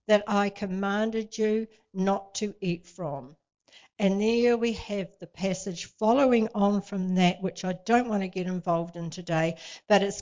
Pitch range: 190-245 Hz